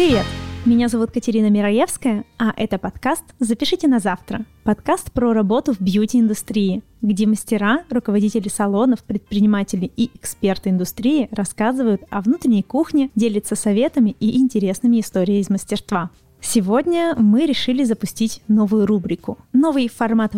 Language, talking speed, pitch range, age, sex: Russian, 125 wpm, 205-250 Hz, 20-39, female